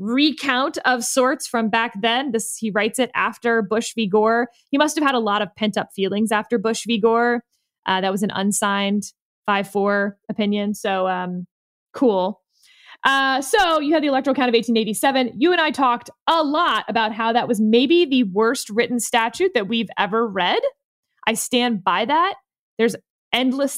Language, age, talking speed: English, 20-39, 180 wpm